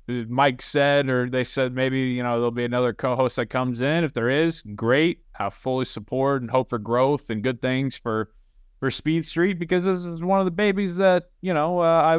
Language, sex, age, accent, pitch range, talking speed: English, male, 20-39, American, 120-145 Hz, 220 wpm